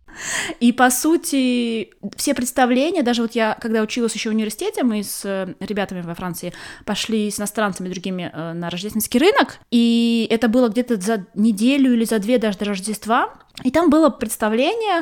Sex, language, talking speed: female, Russian, 170 wpm